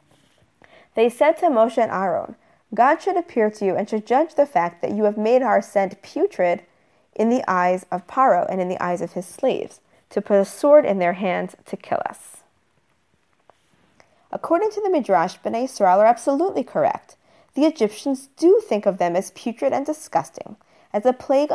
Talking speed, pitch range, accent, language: 185 wpm, 195-285 Hz, American, English